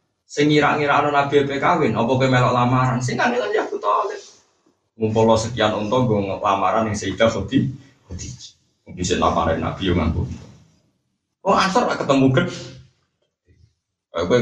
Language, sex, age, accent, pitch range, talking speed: Indonesian, male, 20-39, native, 95-140 Hz, 60 wpm